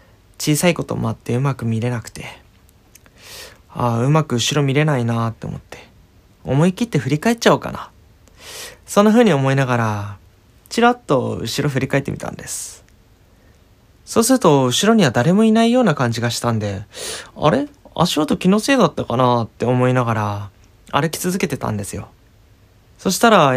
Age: 20-39